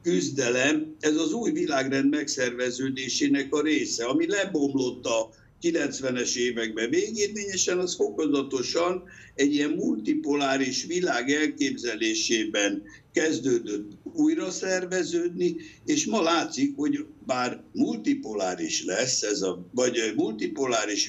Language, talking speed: Hungarian, 100 wpm